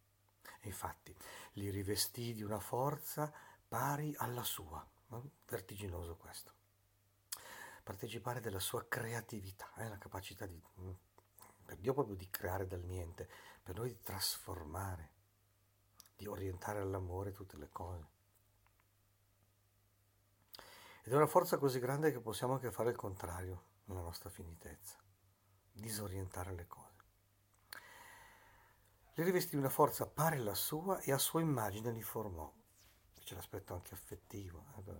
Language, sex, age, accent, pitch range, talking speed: Italian, male, 50-69, native, 95-110 Hz, 125 wpm